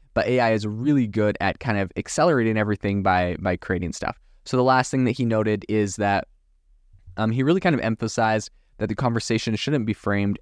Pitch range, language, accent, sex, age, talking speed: 100-115 Hz, English, American, male, 20-39, 200 wpm